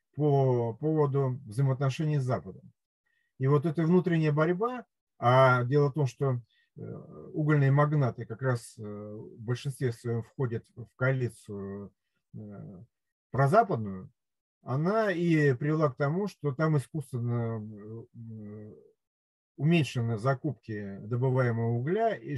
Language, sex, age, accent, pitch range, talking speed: Russian, male, 40-59, native, 115-150 Hz, 100 wpm